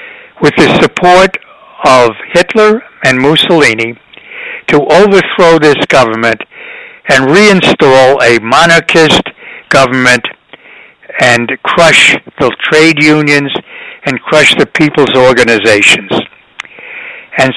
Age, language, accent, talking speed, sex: 60-79, English, American, 90 wpm, male